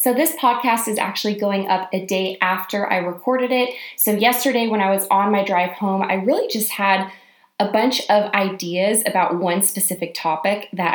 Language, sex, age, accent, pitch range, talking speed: English, female, 20-39, American, 170-210 Hz, 190 wpm